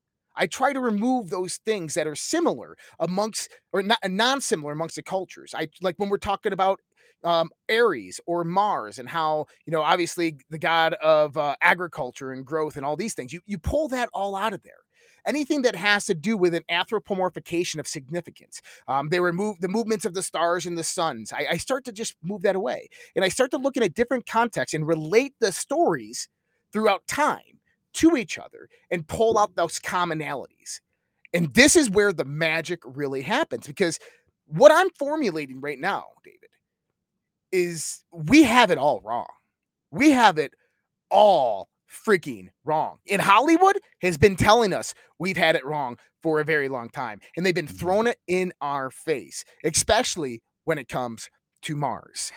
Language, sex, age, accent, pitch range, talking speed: English, male, 30-49, American, 160-230 Hz, 180 wpm